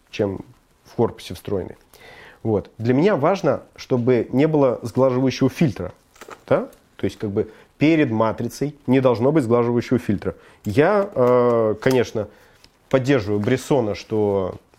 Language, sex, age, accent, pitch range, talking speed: Russian, male, 30-49, native, 115-155 Hz, 120 wpm